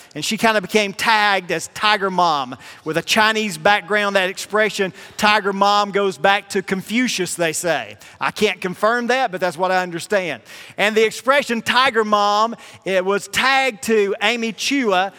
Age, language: 40-59, English